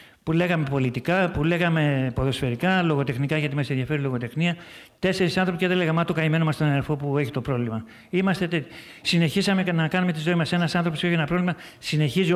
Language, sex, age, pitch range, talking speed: Greek, male, 50-69, 140-175 Hz, 185 wpm